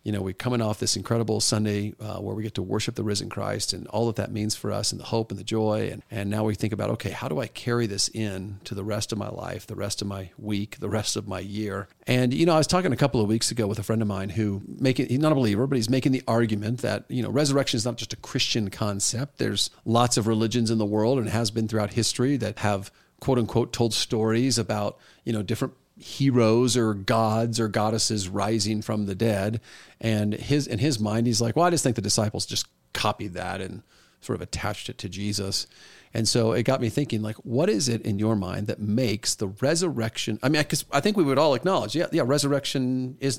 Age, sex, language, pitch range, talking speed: 40-59, male, English, 105-125 Hz, 250 wpm